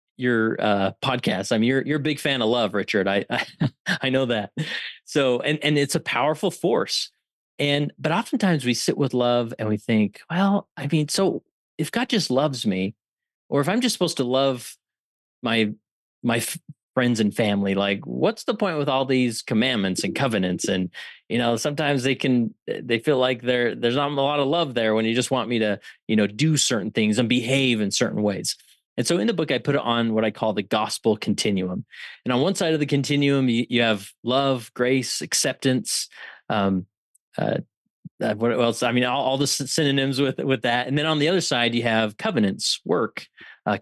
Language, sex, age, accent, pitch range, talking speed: English, male, 30-49, American, 115-145 Hz, 205 wpm